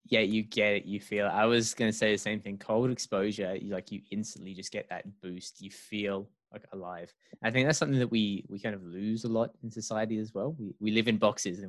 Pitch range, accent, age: 95-115 Hz, Australian, 20-39